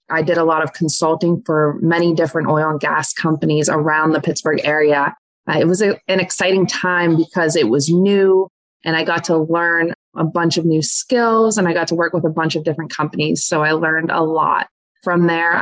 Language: English